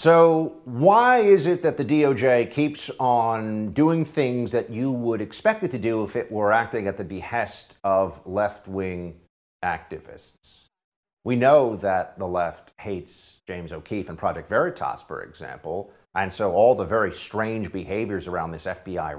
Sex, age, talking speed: male, 50-69, 160 wpm